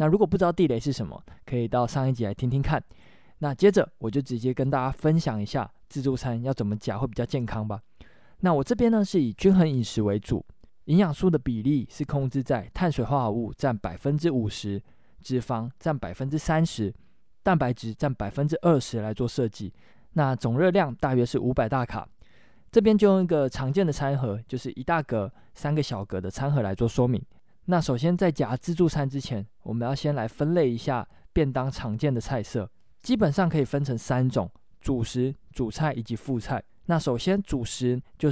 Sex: male